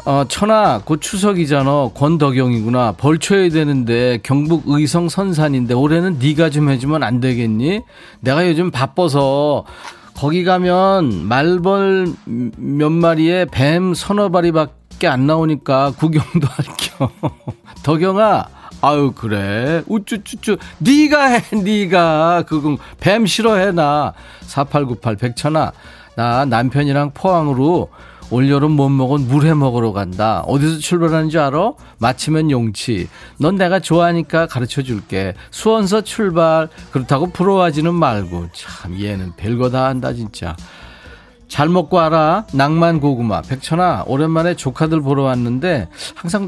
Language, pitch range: Korean, 130-175 Hz